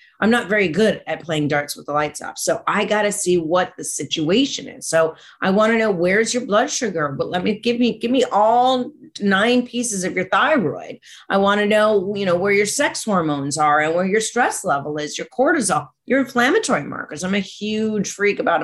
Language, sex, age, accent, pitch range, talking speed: English, female, 40-59, American, 160-215 Hz, 220 wpm